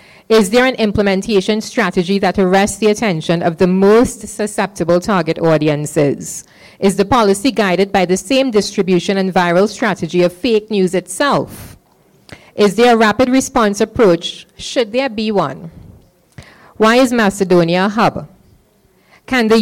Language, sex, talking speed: English, female, 145 wpm